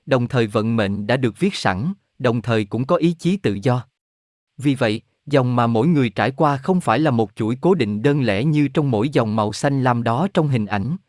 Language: Vietnamese